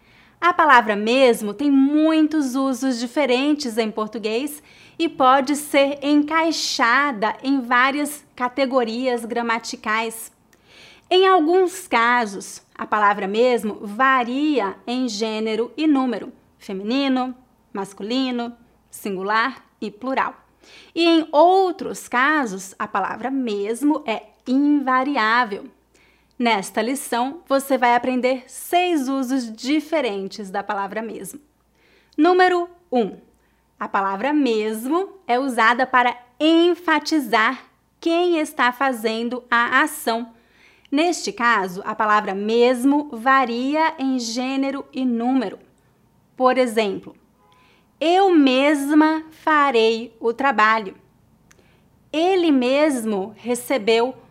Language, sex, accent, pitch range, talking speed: English, female, Brazilian, 230-295 Hz, 95 wpm